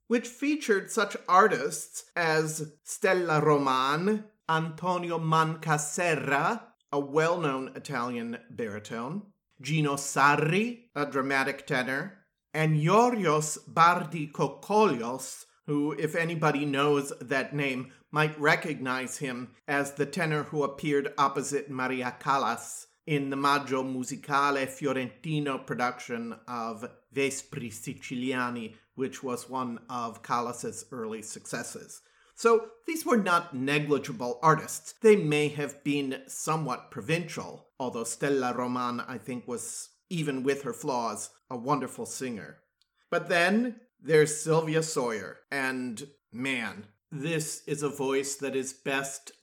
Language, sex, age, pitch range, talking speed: English, male, 30-49, 135-160 Hz, 115 wpm